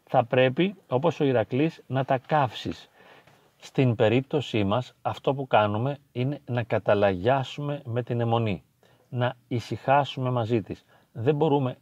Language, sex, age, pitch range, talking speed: Greek, male, 40-59, 110-140 Hz, 130 wpm